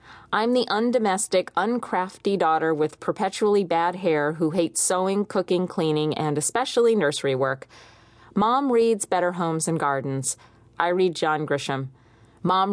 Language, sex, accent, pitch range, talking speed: English, female, American, 145-200 Hz, 135 wpm